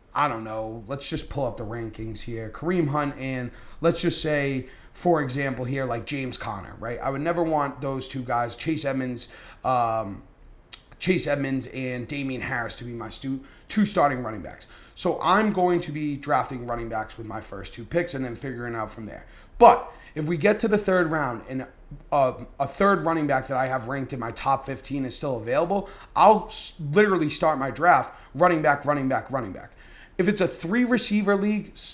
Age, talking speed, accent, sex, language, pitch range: 30-49, 200 wpm, American, male, English, 125-160 Hz